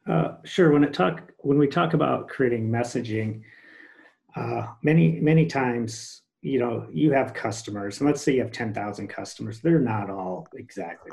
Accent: American